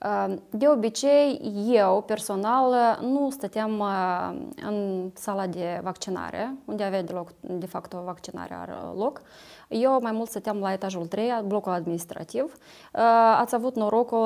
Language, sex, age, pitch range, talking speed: Romanian, female, 20-39, 190-240 Hz, 125 wpm